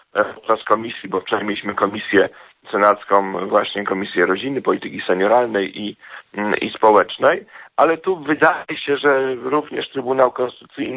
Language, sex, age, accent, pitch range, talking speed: Polish, male, 40-59, native, 120-145 Hz, 125 wpm